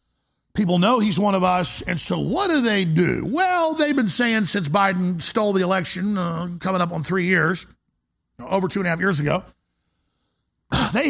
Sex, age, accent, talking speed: male, 50-69, American, 190 wpm